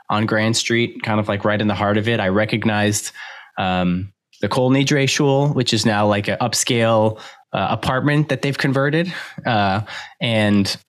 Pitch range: 110-135 Hz